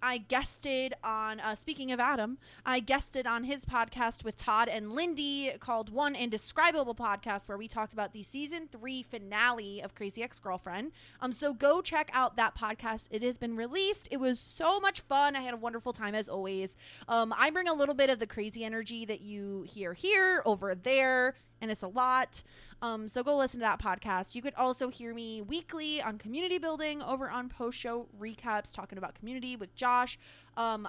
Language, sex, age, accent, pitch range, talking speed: English, female, 20-39, American, 210-275 Hz, 195 wpm